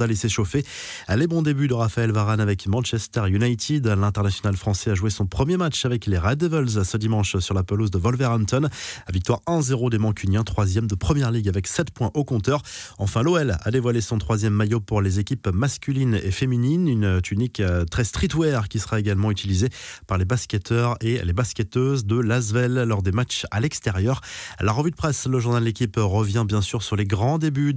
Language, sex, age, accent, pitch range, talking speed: French, male, 20-39, French, 105-130 Hz, 200 wpm